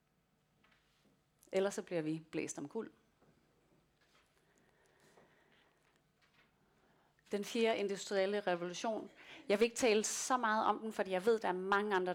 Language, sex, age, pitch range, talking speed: Danish, female, 30-49, 170-205 Hz, 135 wpm